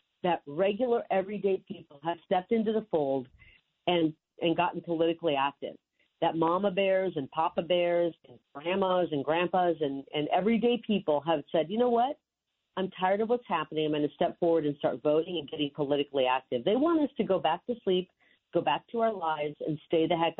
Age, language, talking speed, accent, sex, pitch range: 40-59, English, 195 wpm, American, female, 150-195 Hz